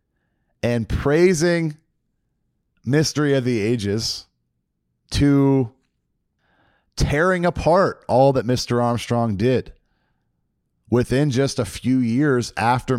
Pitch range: 100-135 Hz